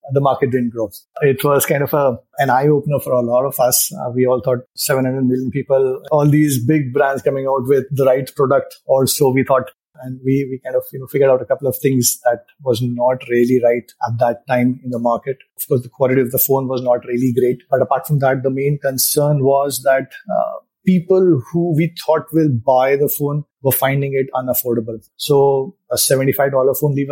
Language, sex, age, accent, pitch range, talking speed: English, male, 30-49, Indian, 125-140 Hz, 215 wpm